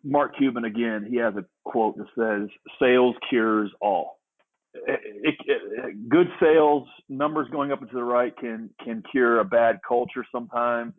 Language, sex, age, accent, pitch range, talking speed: English, male, 30-49, American, 115-145 Hz, 170 wpm